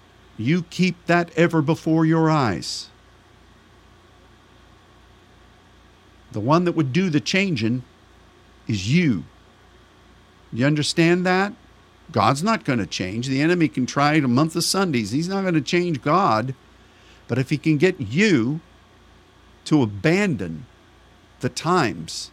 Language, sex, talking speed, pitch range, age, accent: English, male, 130 wpm, 105-150 Hz, 50-69, American